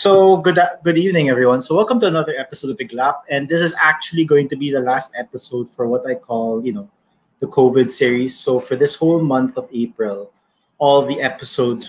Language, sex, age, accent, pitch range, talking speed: English, male, 20-39, Filipino, 115-145 Hz, 210 wpm